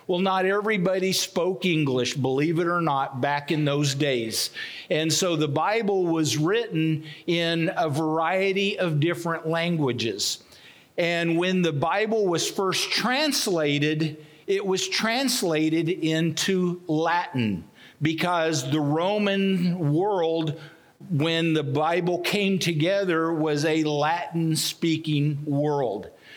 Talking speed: 115 wpm